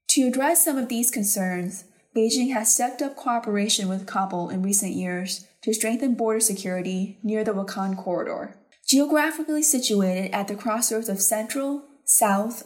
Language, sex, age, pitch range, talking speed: English, female, 20-39, 200-245 Hz, 150 wpm